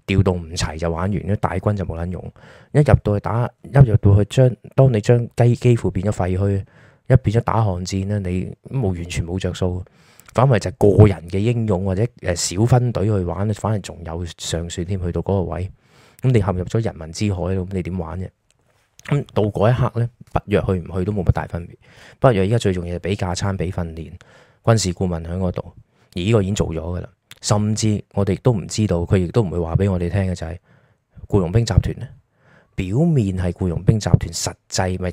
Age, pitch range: 20-39, 90-110 Hz